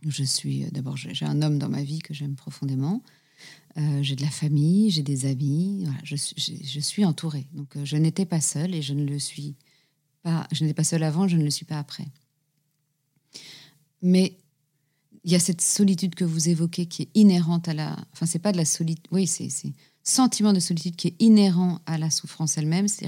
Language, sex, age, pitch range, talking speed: French, female, 40-59, 150-180 Hz, 220 wpm